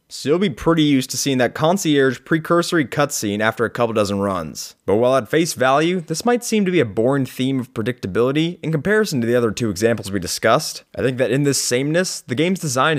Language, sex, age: English, male, 20-39